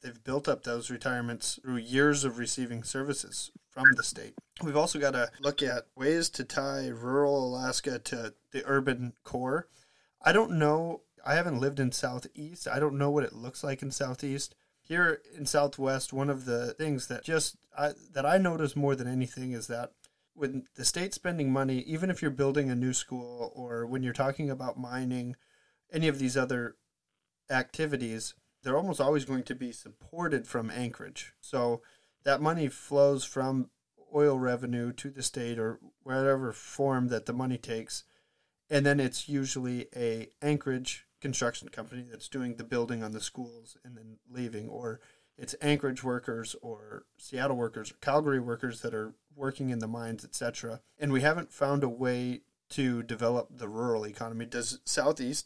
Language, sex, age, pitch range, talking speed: English, male, 30-49, 120-140 Hz, 170 wpm